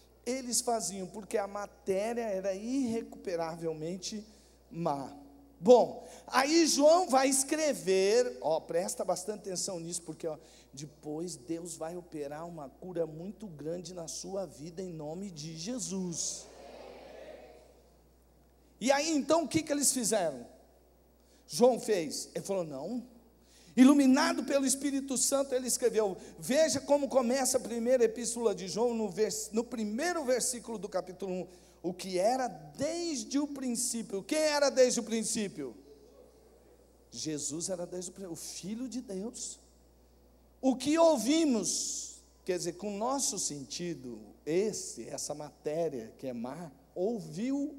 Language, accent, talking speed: Portuguese, Brazilian, 135 wpm